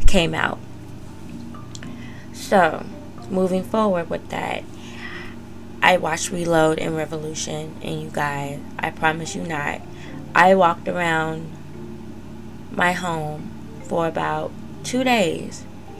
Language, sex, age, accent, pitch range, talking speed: English, female, 20-39, American, 110-175 Hz, 105 wpm